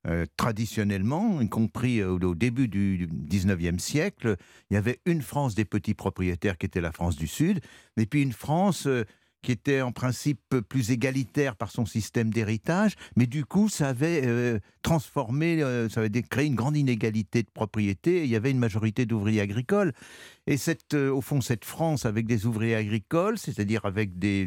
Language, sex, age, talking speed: French, male, 60-79, 185 wpm